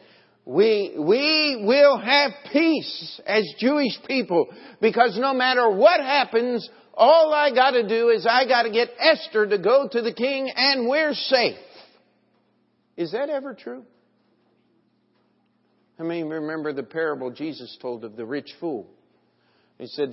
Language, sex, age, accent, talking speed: English, male, 50-69, American, 145 wpm